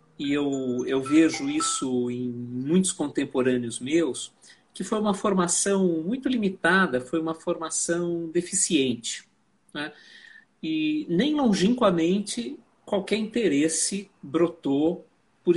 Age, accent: 50-69, Brazilian